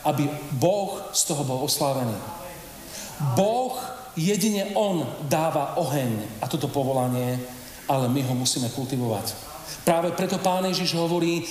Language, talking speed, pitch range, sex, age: Slovak, 125 wpm, 145-185 Hz, male, 40-59